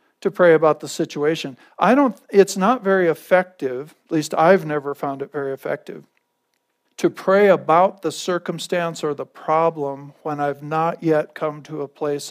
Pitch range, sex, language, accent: 145-175 Hz, male, English, American